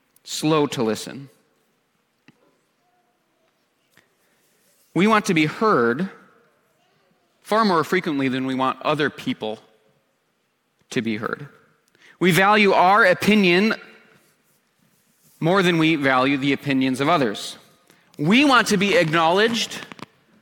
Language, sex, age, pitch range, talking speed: English, male, 30-49, 145-215 Hz, 105 wpm